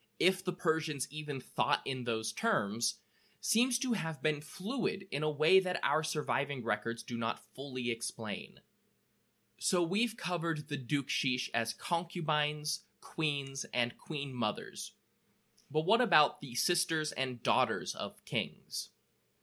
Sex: male